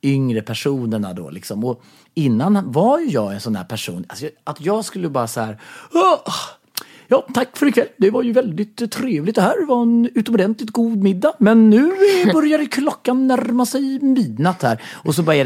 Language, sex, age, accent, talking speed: Swedish, male, 30-49, native, 185 wpm